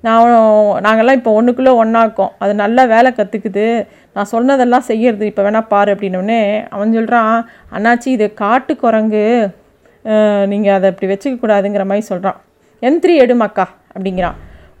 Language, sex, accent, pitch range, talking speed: Tamil, female, native, 210-255 Hz, 130 wpm